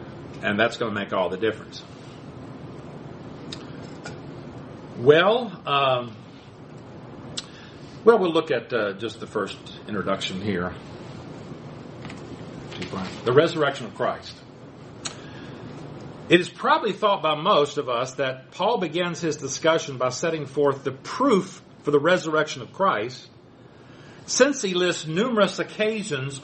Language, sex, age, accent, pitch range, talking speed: English, male, 50-69, American, 145-205 Hz, 120 wpm